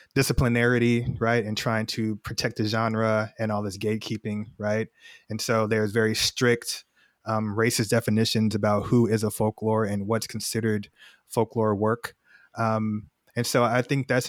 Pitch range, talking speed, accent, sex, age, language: 110-120 Hz, 155 wpm, American, male, 20-39, English